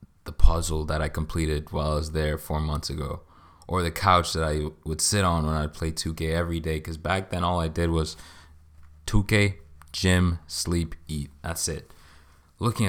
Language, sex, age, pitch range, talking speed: English, male, 20-39, 80-90 Hz, 185 wpm